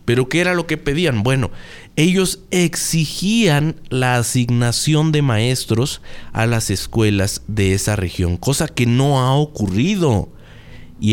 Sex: male